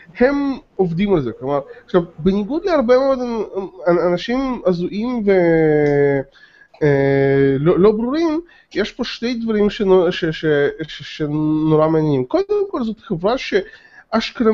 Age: 20-39